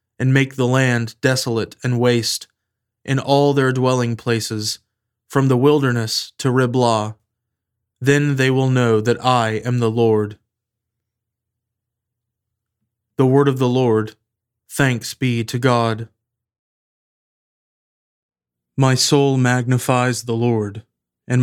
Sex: male